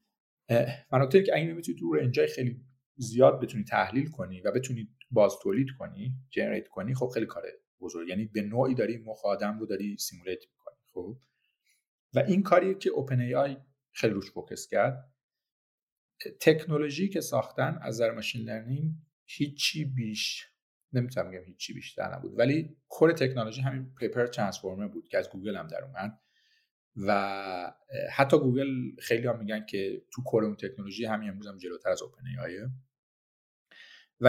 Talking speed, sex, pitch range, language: 150 wpm, male, 110-150 Hz, Persian